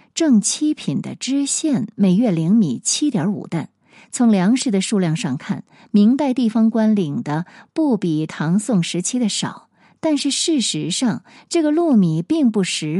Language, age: Chinese, 50-69